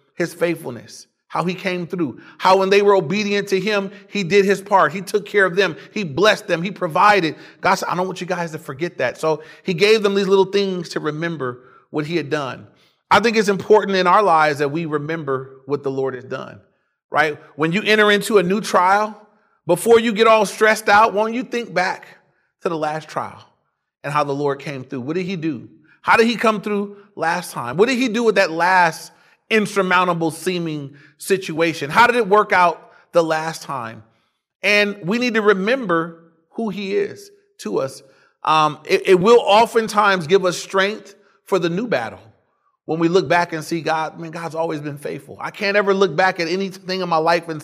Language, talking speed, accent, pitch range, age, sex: English, 210 wpm, American, 160-200 Hz, 30-49, male